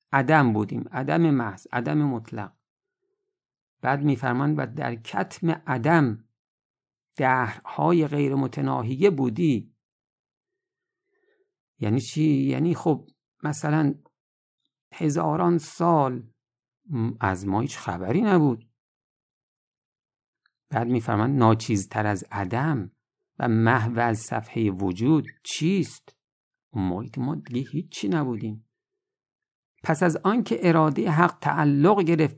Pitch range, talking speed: 120-165 Hz, 95 wpm